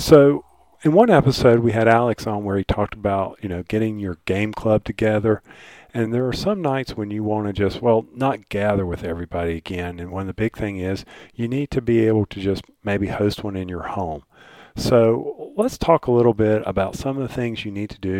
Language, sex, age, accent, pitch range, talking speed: English, male, 40-59, American, 100-125 Hz, 230 wpm